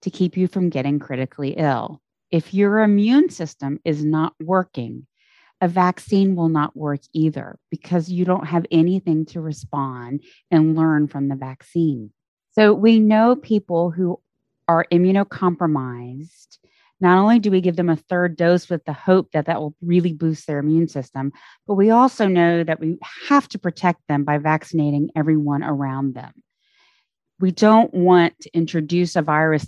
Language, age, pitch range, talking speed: English, 30-49, 150-195 Hz, 165 wpm